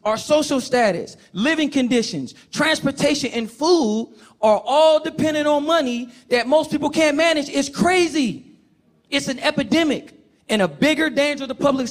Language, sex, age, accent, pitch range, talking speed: English, male, 40-59, American, 200-280 Hz, 145 wpm